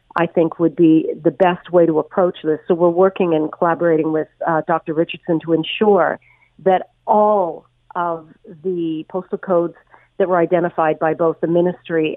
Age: 50-69